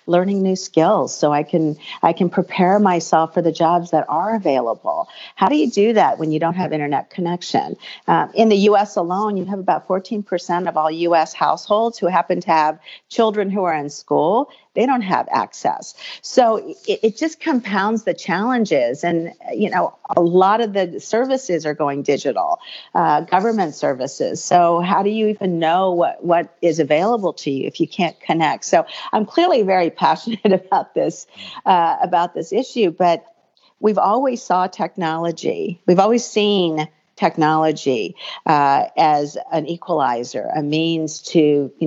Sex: female